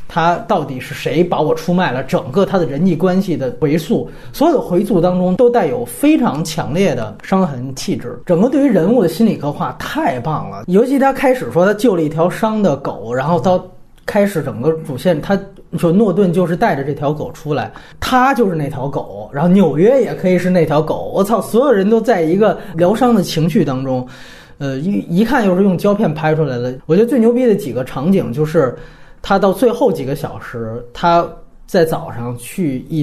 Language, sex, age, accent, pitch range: Chinese, male, 30-49, native, 140-205 Hz